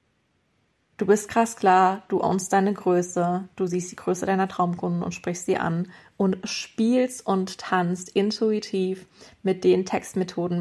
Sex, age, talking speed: female, 20-39, 145 wpm